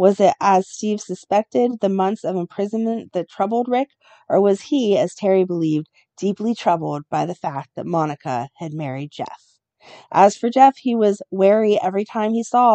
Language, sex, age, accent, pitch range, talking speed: English, female, 40-59, American, 175-220 Hz, 180 wpm